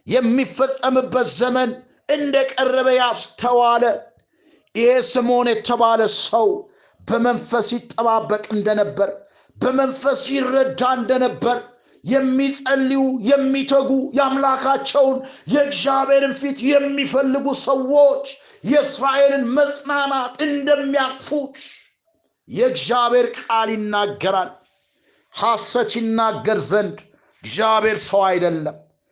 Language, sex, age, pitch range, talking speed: Amharic, male, 60-79, 245-280 Hz, 70 wpm